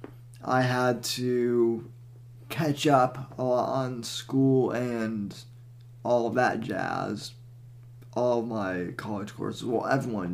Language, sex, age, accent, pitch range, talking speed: English, male, 20-39, American, 115-125 Hz, 120 wpm